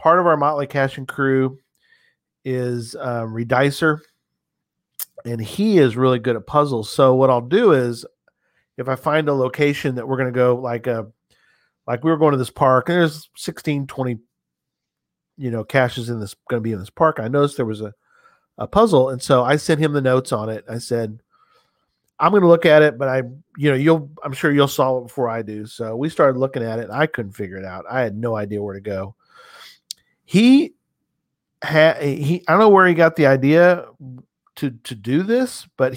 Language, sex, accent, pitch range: English, male, American, 125-155 Hz